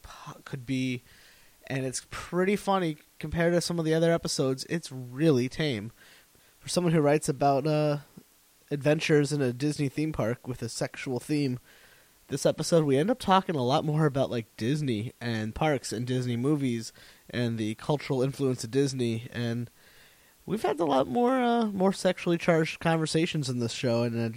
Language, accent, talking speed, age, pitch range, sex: English, American, 175 wpm, 20-39, 120-155 Hz, male